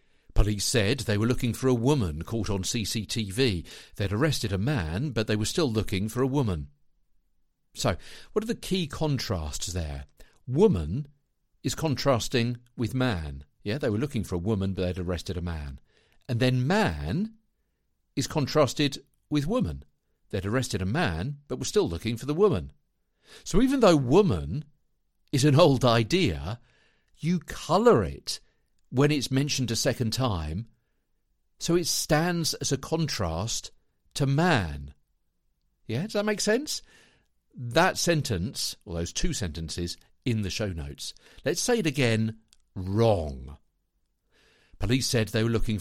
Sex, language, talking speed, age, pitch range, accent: male, English, 150 wpm, 50-69, 90-140 Hz, British